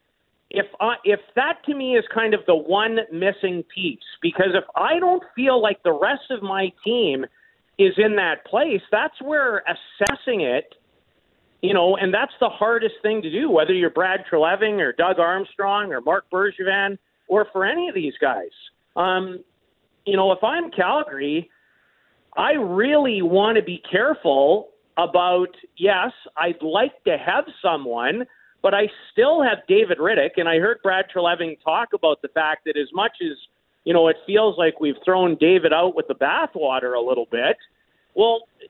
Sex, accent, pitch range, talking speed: male, American, 175-245 Hz, 170 wpm